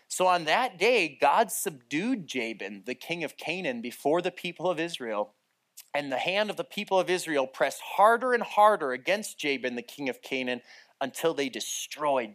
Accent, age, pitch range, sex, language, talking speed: American, 30-49, 150-225 Hz, male, English, 180 wpm